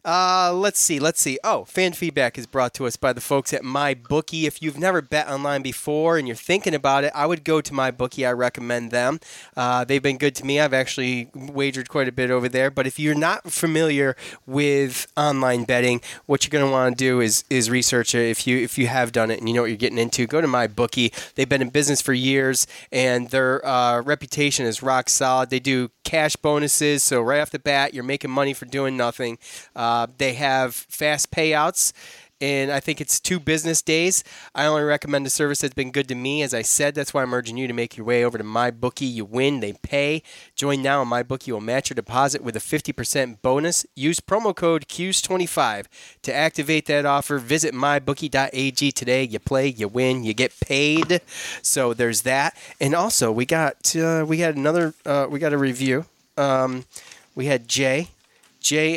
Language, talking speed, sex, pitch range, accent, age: English, 210 wpm, male, 125-150 Hz, American, 20-39